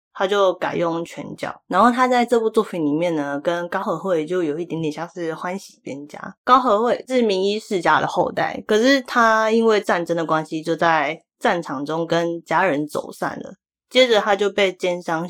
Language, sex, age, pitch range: Chinese, female, 20-39, 155-200 Hz